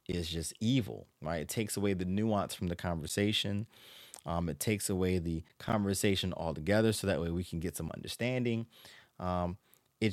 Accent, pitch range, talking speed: American, 85-110 Hz, 170 wpm